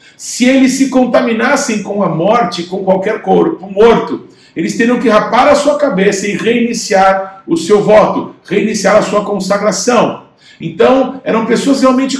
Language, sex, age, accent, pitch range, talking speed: Portuguese, male, 50-69, Brazilian, 195-245 Hz, 150 wpm